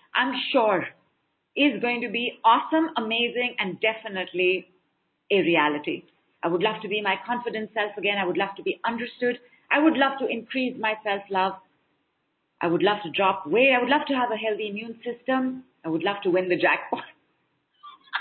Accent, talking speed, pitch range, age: Indian, 185 wpm, 175-235 Hz, 50-69